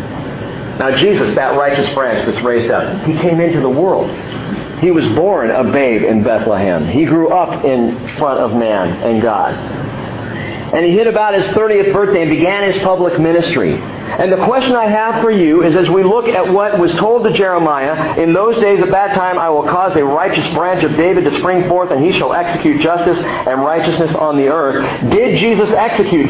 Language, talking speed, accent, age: English, 200 wpm, American, 50-69